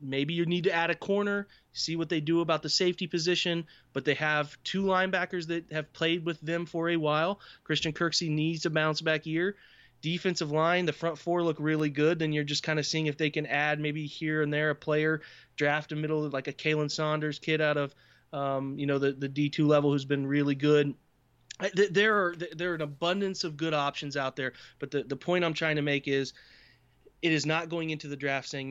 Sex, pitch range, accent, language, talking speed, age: male, 140-165 Hz, American, English, 230 wpm, 20-39